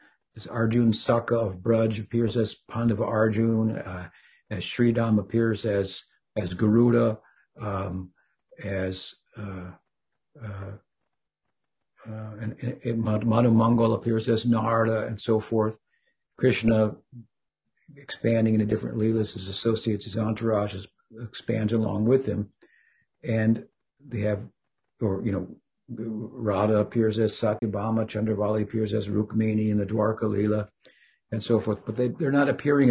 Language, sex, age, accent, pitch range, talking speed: English, male, 60-79, American, 110-120 Hz, 130 wpm